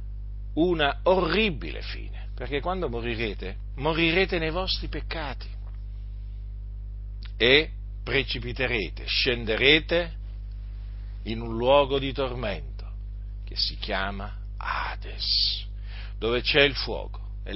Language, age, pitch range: Italian, 50-69, 100-130 Hz